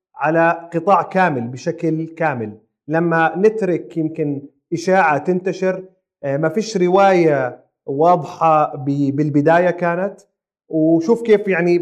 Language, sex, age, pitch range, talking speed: Arabic, male, 40-59, 155-190 Hz, 95 wpm